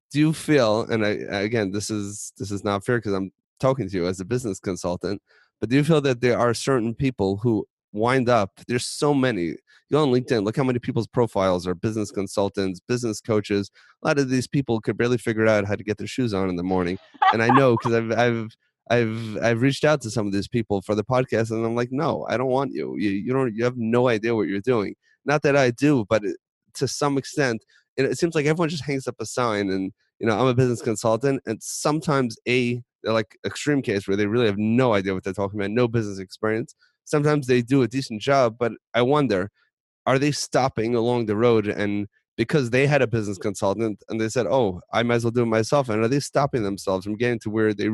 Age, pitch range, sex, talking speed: 30-49, 105-130 Hz, male, 240 wpm